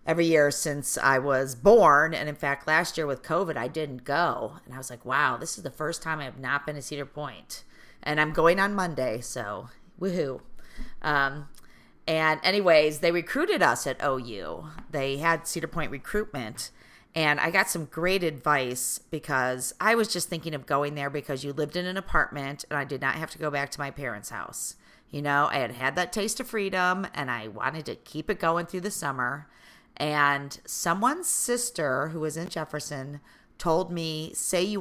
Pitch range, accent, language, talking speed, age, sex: 140-170 Hz, American, English, 200 wpm, 40-59, female